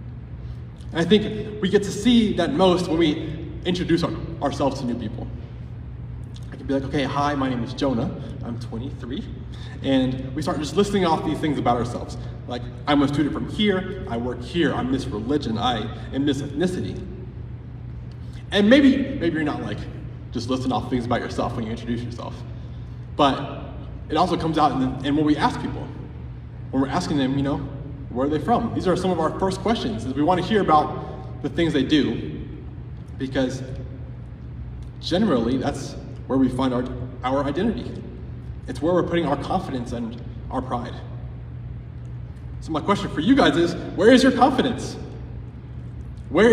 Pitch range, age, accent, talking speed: 120-180 Hz, 20-39, American, 180 wpm